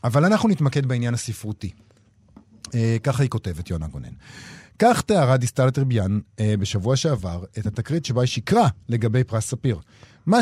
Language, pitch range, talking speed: Hebrew, 110-145 Hz, 155 wpm